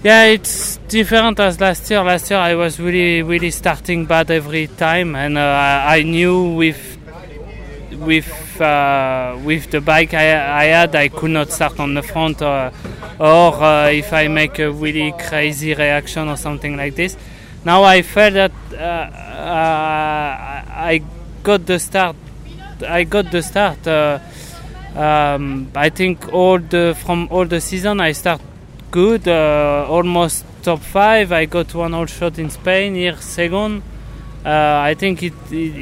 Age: 20-39